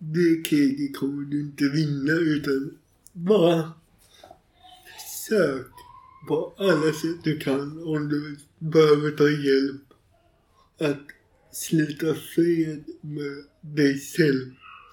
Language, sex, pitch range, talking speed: Swedish, male, 145-175 Hz, 100 wpm